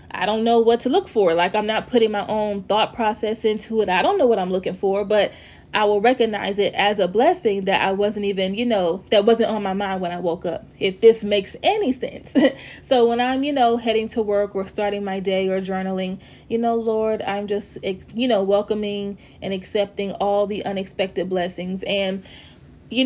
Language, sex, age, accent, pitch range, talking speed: English, female, 20-39, American, 195-225 Hz, 215 wpm